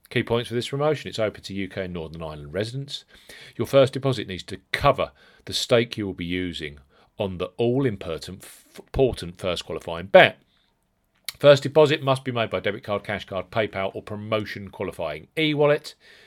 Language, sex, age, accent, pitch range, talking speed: English, male, 40-59, British, 95-135 Hz, 175 wpm